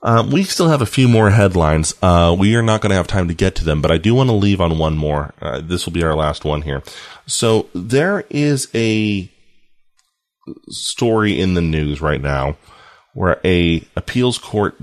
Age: 30-49